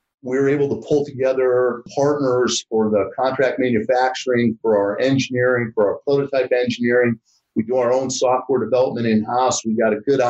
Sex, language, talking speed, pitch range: male, English, 170 wpm, 115-130 Hz